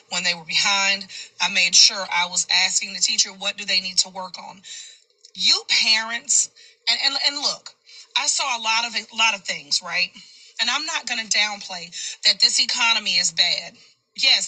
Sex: female